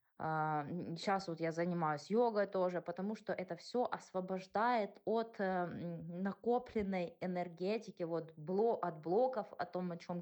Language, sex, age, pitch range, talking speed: English, female, 20-39, 175-210 Hz, 125 wpm